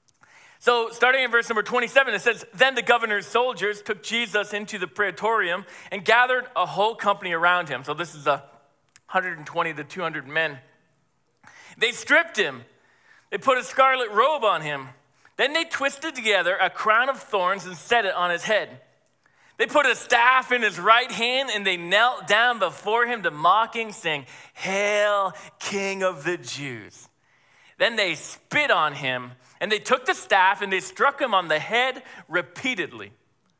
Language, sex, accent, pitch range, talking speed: English, male, American, 175-235 Hz, 170 wpm